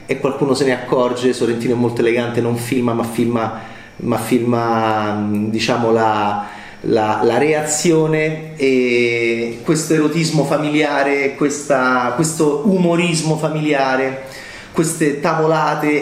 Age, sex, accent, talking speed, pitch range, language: 30-49, male, native, 110 wpm, 120-150 Hz, Italian